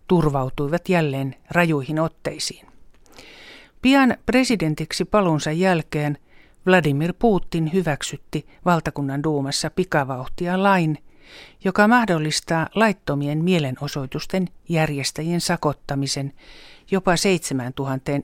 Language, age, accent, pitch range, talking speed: Finnish, 60-79, native, 140-180 Hz, 75 wpm